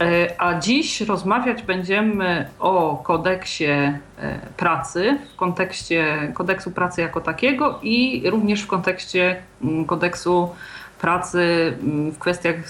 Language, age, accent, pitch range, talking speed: Polish, 40-59, native, 160-195 Hz, 100 wpm